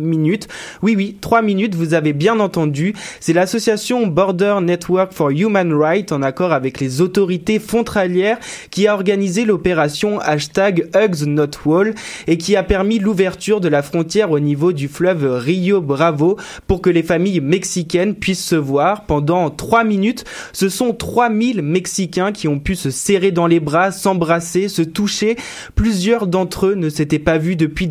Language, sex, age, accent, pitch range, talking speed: French, male, 20-39, French, 160-200 Hz, 165 wpm